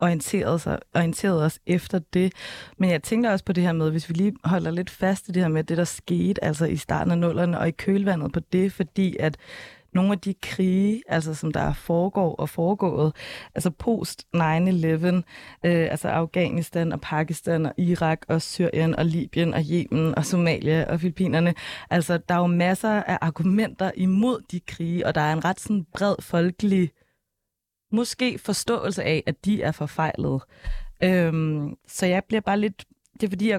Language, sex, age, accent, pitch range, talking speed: Danish, female, 20-39, native, 160-190 Hz, 190 wpm